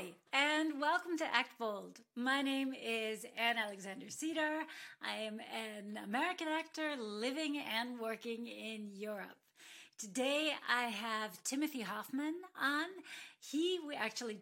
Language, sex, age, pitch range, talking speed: English, female, 40-59, 220-285 Hz, 120 wpm